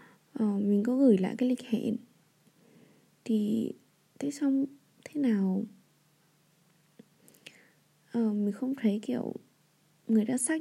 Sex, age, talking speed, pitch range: female, 20-39, 120 wpm, 195-245 Hz